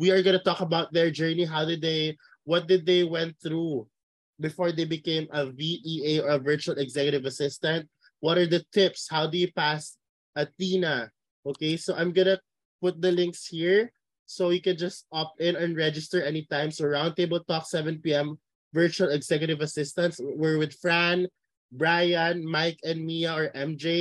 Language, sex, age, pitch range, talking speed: Filipino, male, 20-39, 155-175 Hz, 170 wpm